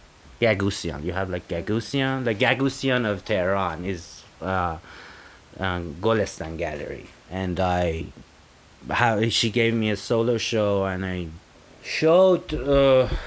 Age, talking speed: 30-49, 115 wpm